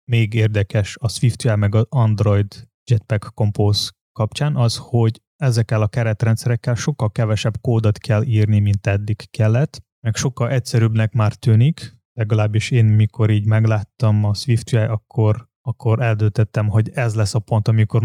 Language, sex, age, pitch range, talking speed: Hungarian, male, 20-39, 110-120 Hz, 145 wpm